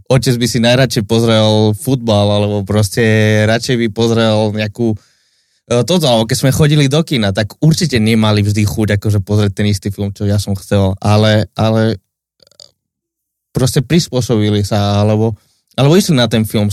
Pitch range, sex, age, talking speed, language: 105-125 Hz, male, 20-39, 160 wpm, Slovak